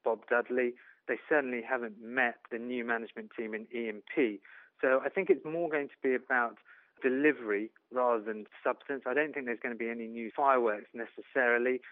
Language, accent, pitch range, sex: English, British, 120-145 Hz, male